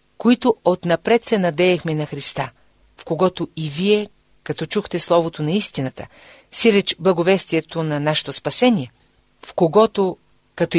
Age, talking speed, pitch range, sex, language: 40-59, 135 wpm, 150-200 Hz, female, Bulgarian